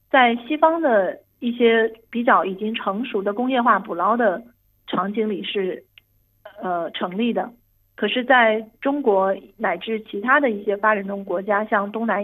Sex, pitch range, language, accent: female, 200-240 Hz, Chinese, native